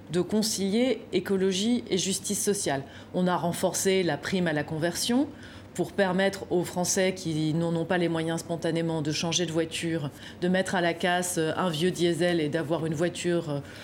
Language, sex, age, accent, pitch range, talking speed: French, female, 30-49, French, 170-210 Hz, 180 wpm